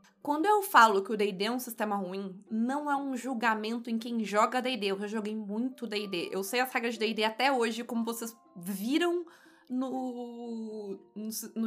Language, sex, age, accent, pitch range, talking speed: Portuguese, female, 20-39, Brazilian, 220-275 Hz, 185 wpm